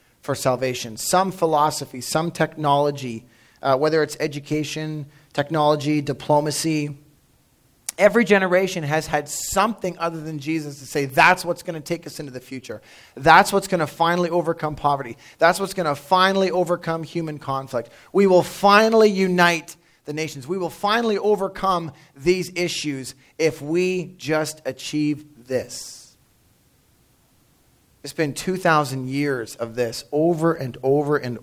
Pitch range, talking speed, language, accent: 145-190 Hz, 140 wpm, English, American